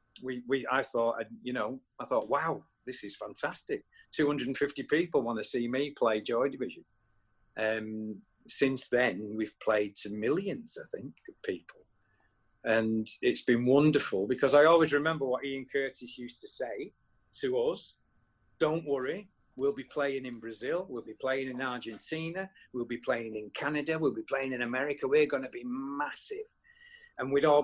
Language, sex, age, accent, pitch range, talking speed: English, male, 40-59, British, 125-200 Hz, 170 wpm